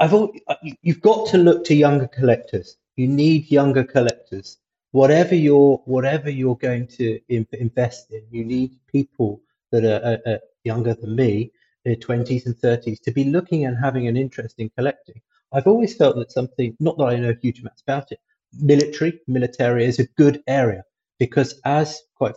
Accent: British